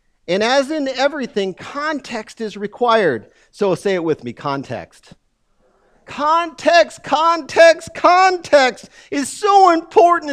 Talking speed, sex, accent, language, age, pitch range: 110 wpm, male, American, English, 40-59, 160-255 Hz